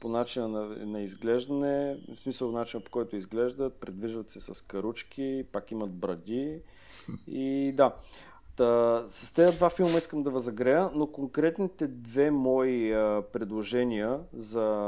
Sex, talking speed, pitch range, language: male, 135 wpm, 110-140 Hz, Bulgarian